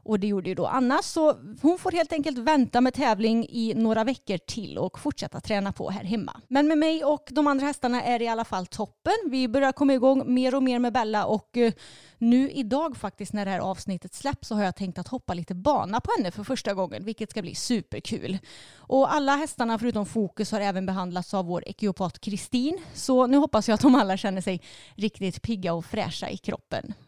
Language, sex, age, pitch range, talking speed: Swedish, female, 30-49, 195-260 Hz, 220 wpm